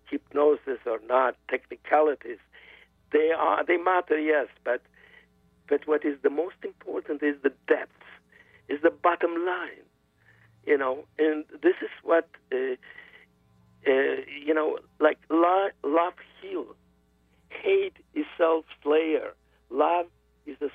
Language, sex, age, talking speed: English, male, 60-79, 130 wpm